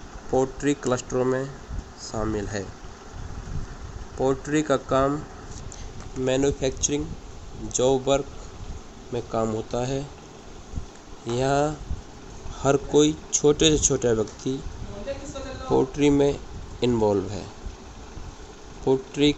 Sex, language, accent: male, English, Indian